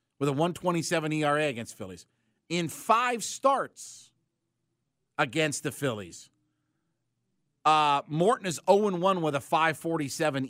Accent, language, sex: American, English, male